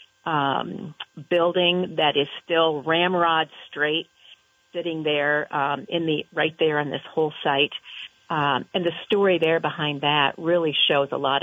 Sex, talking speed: female, 150 wpm